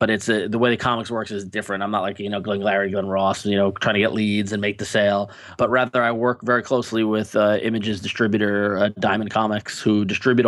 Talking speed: 250 wpm